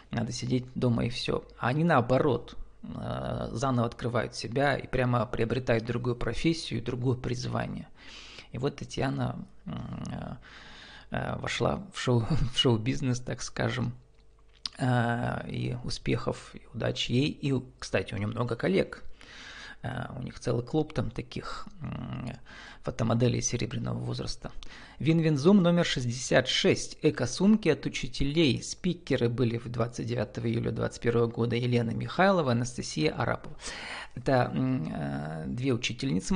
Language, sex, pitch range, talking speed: Russian, male, 120-150 Hz, 115 wpm